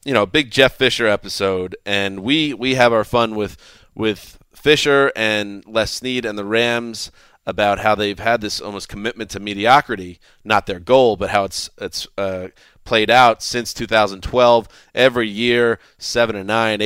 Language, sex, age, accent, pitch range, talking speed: English, male, 30-49, American, 100-125 Hz, 165 wpm